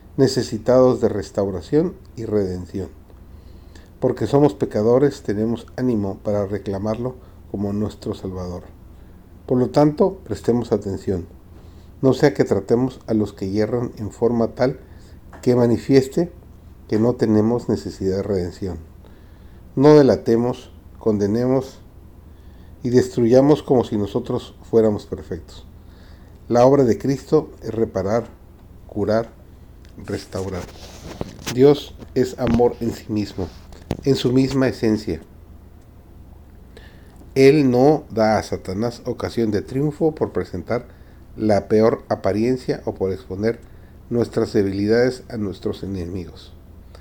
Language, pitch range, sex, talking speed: Spanish, 90-120 Hz, male, 110 wpm